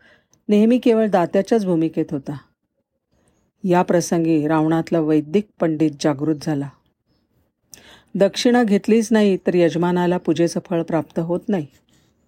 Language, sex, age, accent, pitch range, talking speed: Marathi, female, 40-59, native, 155-190 Hz, 105 wpm